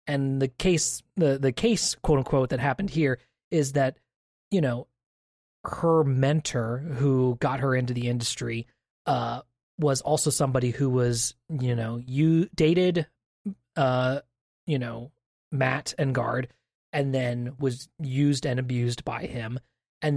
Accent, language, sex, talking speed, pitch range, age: American, English, male, 145 wpm, 125-145 Hz, 30-49